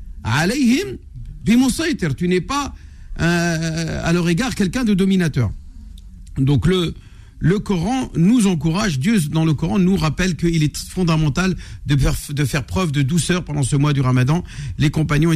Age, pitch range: 50-69, 140-195 Hz